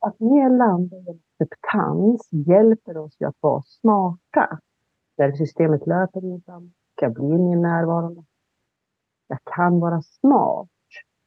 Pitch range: 150-200 Hz